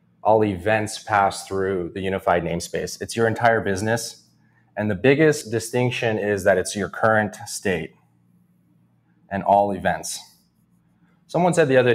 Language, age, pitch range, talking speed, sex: English, 20-39, 95-125 Hz, 140 wpm, male